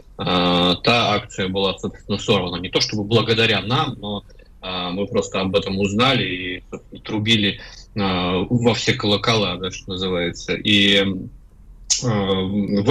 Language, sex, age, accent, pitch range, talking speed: Russian, male, 20-39, native, 95-120 Hz, 115 wpm